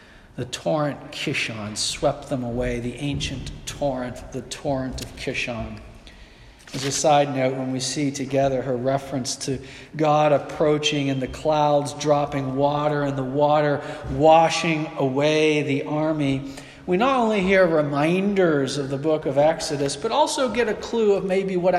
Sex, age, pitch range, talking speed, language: male, 40-59, 135-165 Hz, 155 wpm, English